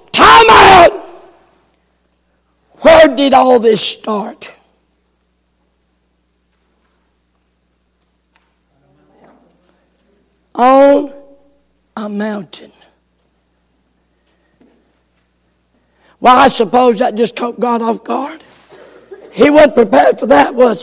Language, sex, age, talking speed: English, male, 60-79, 70 wpm